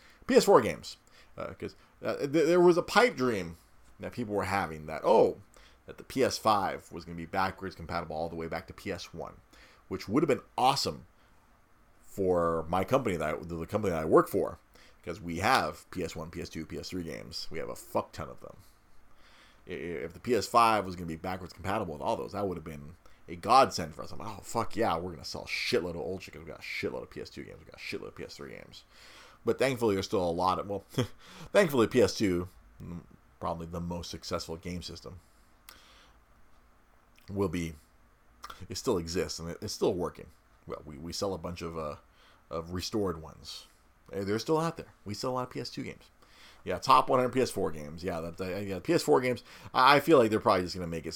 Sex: male